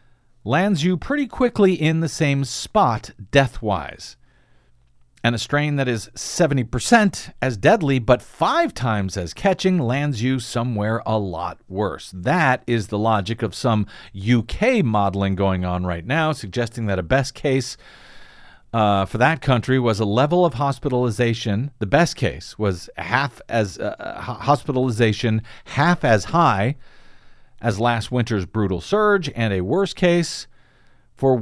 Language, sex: English, male